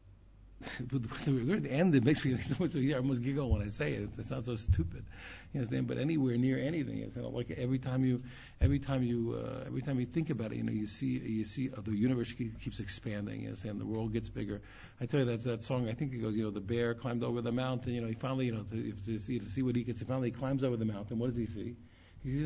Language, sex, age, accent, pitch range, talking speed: English, male, 50-69, American, 110-130 Hz, 275 wpm